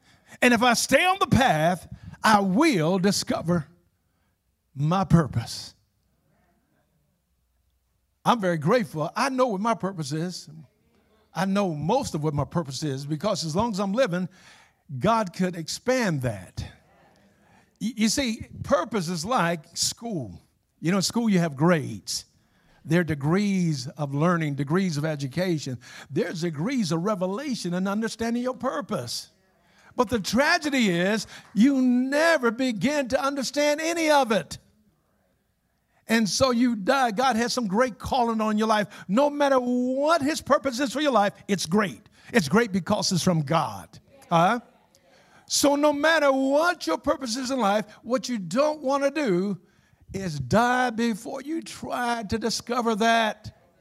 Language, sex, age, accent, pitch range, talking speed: English, male, 50-69, American, 170-255 Hz, 145 wpm